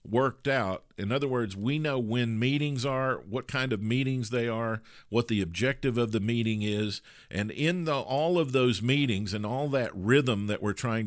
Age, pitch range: 50-69, 100-130 Hz